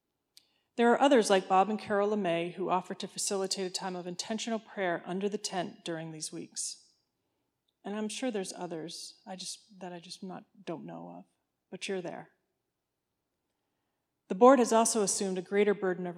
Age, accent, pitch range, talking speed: 30-49, American, 175-205 Hz, 180 wpm